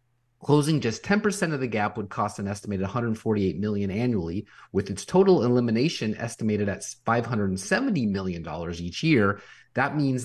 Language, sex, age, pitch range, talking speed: English, male, 30-49, 100-130 Hz, 145 wpm